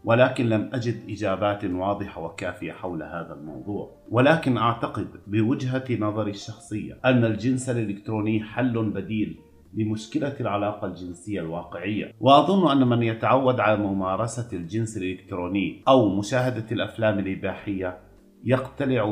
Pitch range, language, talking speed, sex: 95-120 Hz, Arabic, 115 wpm, male